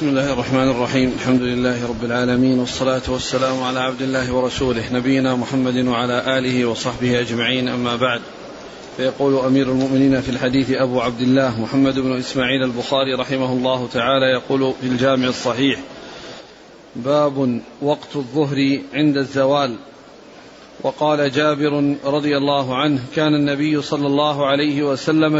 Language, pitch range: Arabic, 130-155 Hz